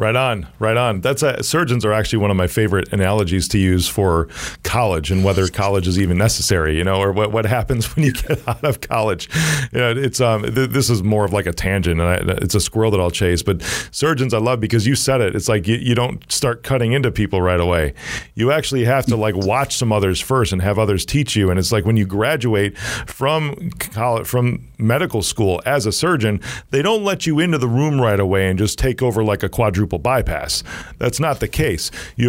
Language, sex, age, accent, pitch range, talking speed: English, male, 40-59, American, 100-130 Hz, 230 wpm